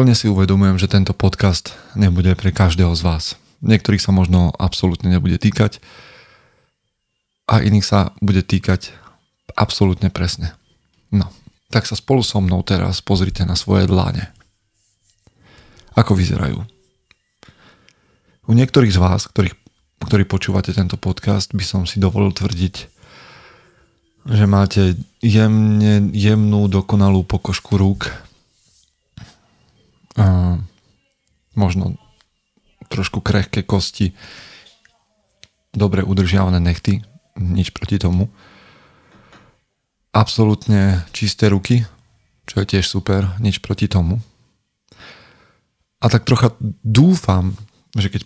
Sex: male